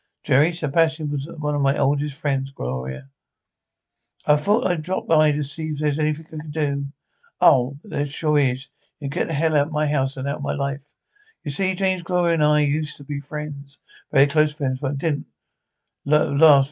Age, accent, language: 60-79, British, English